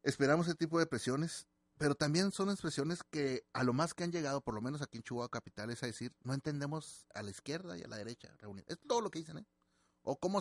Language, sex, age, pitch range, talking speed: Spanish, male, 30-49, 100-140 Hz, 240 wpm